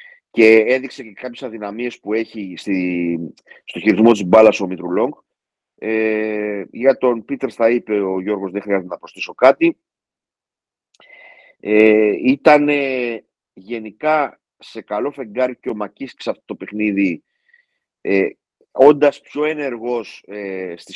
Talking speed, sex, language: 115 wpm, male, Greek